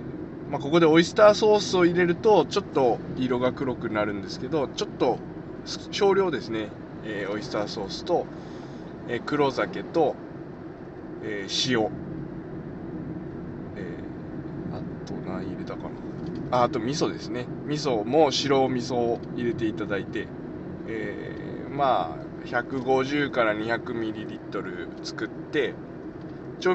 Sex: male